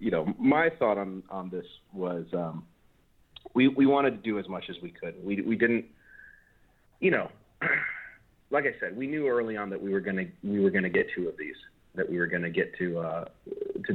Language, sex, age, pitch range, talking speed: English, male, 30-49, 90-125 Hz, 215 wpm